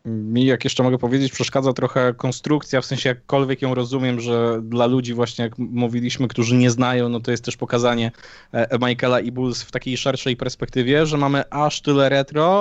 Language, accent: Polish, native